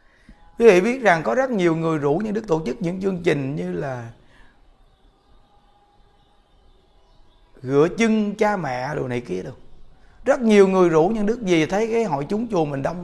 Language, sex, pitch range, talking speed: Vietnamese, male, 140-205 Hz, 185 wpm